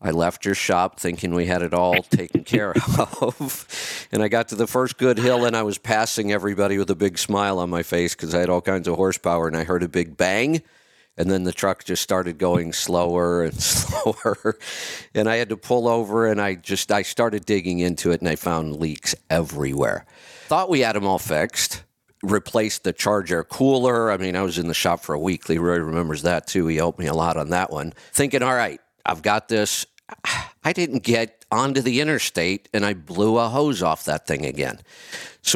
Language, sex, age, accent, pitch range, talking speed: English, male, 50-69, American, 85-110 Hz, 220 wpm